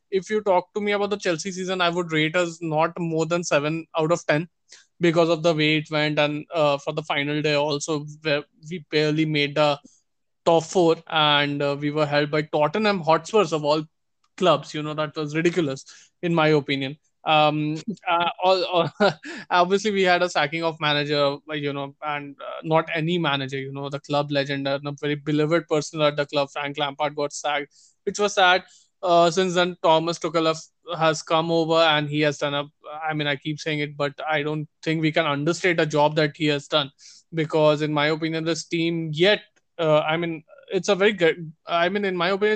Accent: Indian